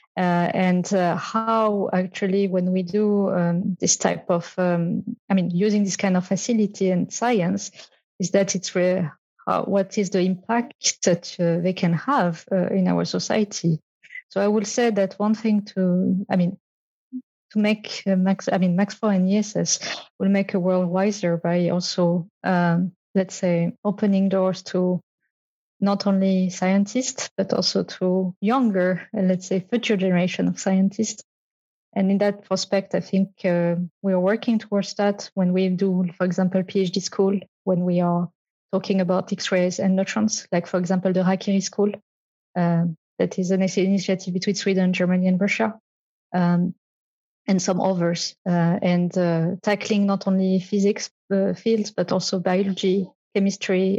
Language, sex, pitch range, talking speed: Swedish, female, 180-200 Hz, 160 wpm